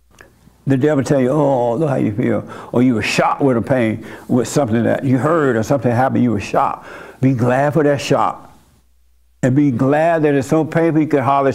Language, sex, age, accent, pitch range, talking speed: English, male, 60-79, American, 115-165 Hz, 225 wpm